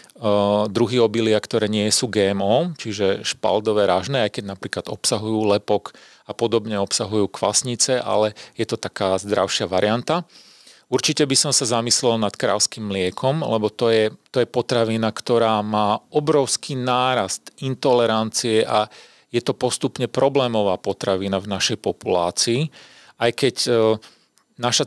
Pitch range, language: 105-125 Hz, Czech